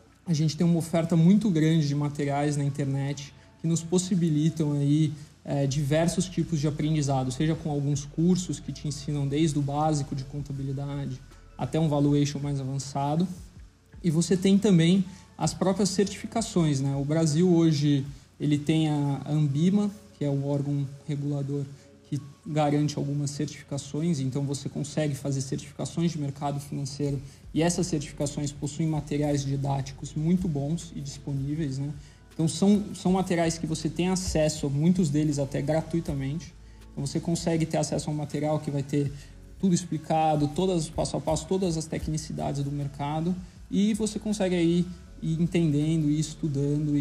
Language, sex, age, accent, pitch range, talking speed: Portuguese, male, 20-39, Brazilian, 140-165 Hz, 155 wpm